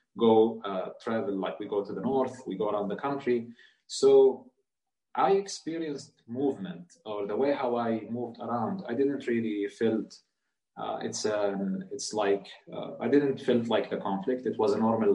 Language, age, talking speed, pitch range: English, 30-49, 180 wpm, 110-145 Hz